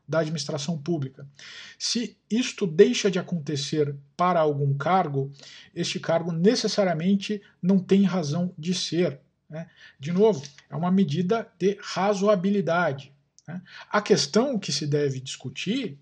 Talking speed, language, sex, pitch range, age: 125 wpm, Portuguese, male, 145-180 Hz, 50-69